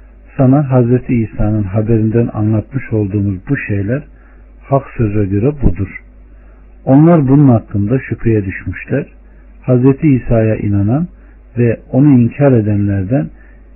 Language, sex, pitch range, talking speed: Turkish, male, 100-125 Hz, 105 wpm